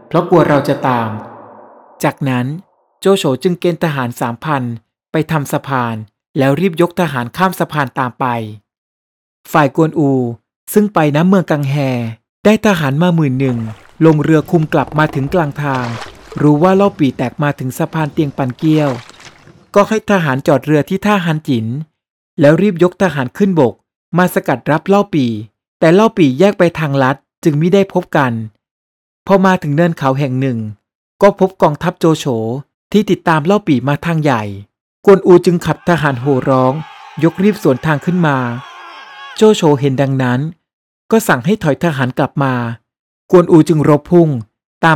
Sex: male